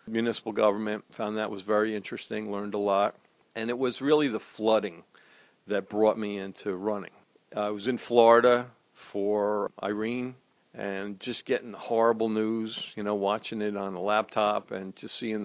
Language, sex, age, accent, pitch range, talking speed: English, male, 50-69, American, 105-120 Hz, 165 wpm